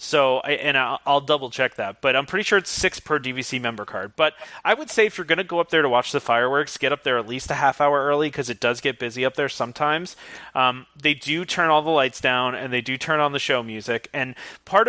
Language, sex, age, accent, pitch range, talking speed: English, male, 30-49, American, 130-160 Hz, 265 wpm